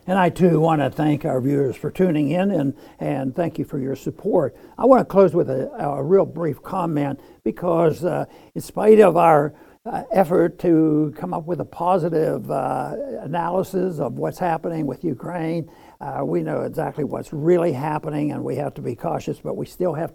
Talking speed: 195 wpm